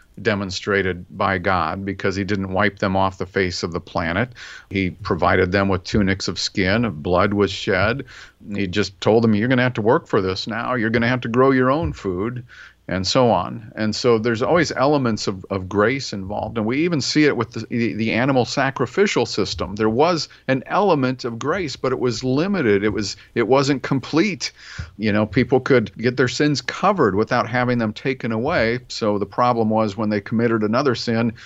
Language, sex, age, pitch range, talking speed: English, male, 50-69, 105-130 Hz, 205 wpm